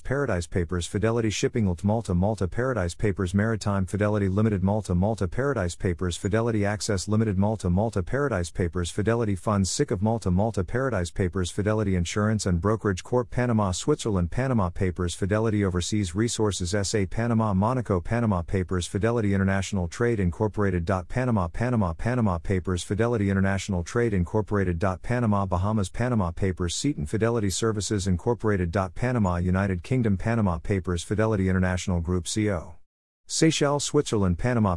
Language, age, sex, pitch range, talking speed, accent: English, 40-59, male, 95-110 Hz, 140 wpm, American